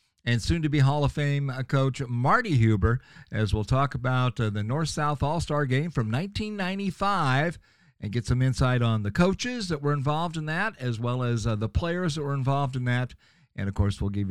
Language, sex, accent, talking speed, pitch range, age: English, male, American, 220 wpm, 115-160 Hz, 50-69